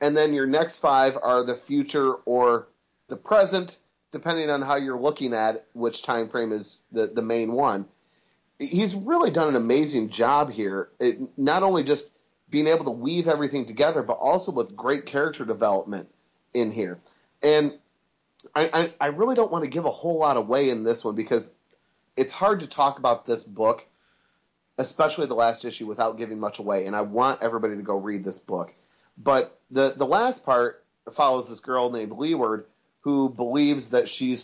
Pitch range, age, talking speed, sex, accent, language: 115-150 Hz, 30-49, 180 wpm, male, American, English